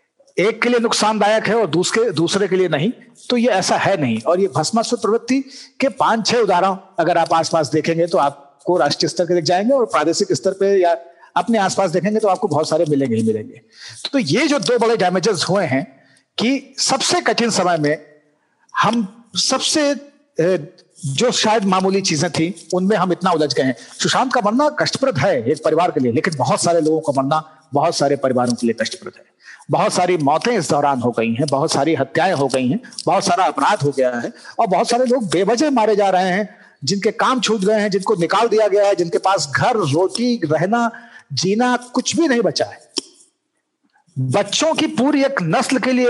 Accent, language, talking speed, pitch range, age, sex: native, Hindi, 190 wpm, 160-230 Hz, 50-69, male